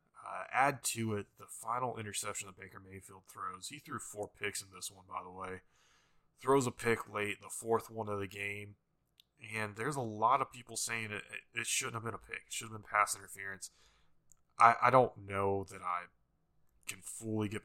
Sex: male